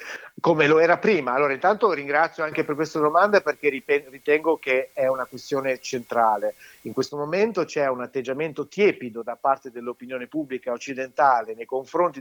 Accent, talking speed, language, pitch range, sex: native, 155 wpm, Italian, 130-170 Hz, male